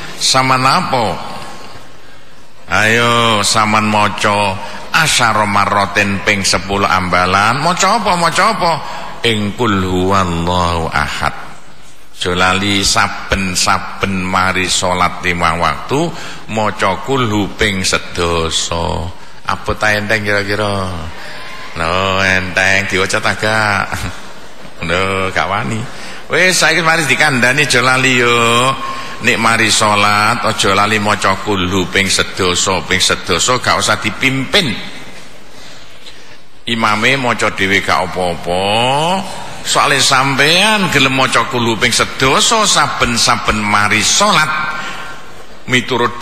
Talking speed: 95 wpm